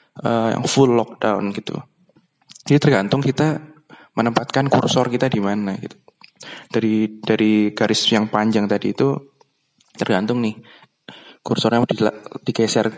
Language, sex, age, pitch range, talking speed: Indonesian, male, 20-39, 110-125 Hz, 125 wpm